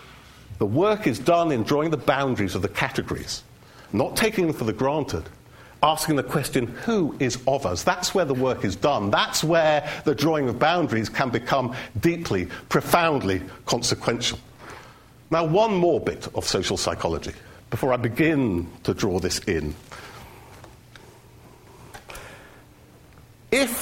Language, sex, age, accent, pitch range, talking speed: English, male, 50-69, British, 125-195 Hz, 140 wpm